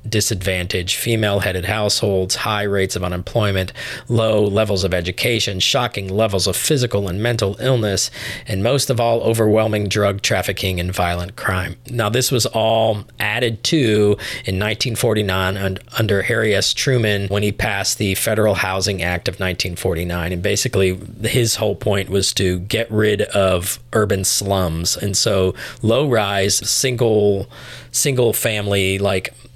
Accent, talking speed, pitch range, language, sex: American, 140 wpm, 95-115 Hz, English, male